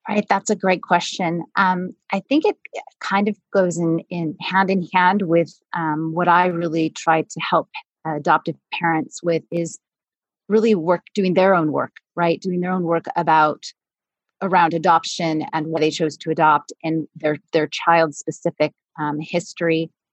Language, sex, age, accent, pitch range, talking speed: English, female, 30-49, American, 160-195 Hz, 170 wpm